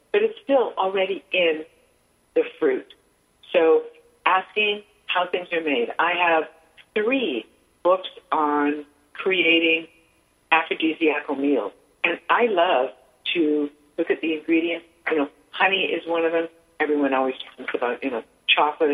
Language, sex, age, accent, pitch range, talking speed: English, female, 50-69, American, 150-235 Hz, 135 wpm